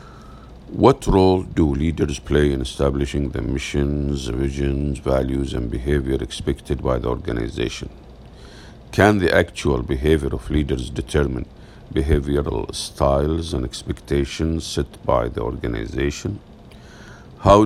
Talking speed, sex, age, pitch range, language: 110 wpm, male, 50-69, 70-85 Hz, English